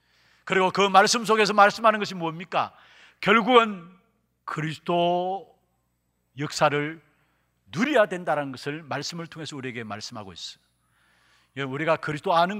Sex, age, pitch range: male, 40-59, 135-205 Hz